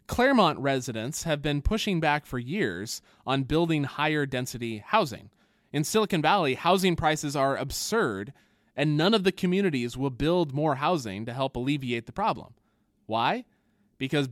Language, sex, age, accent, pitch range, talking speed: English, male, 20-39, American, 120-165 Hz, 150 wpm